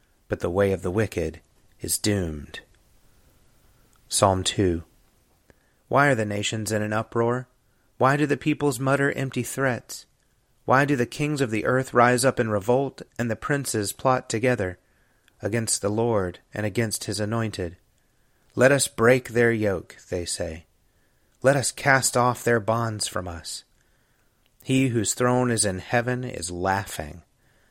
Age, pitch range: 30-49, 100-125 Hz